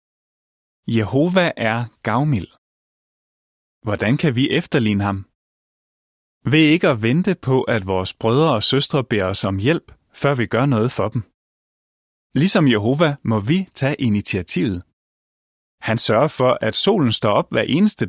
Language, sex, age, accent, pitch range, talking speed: Danish, male, 30-49, native, 105-150 Hz, 145 wpm